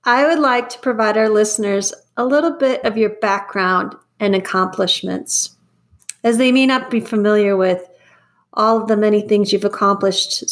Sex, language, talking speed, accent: female, English, 165 wpm, American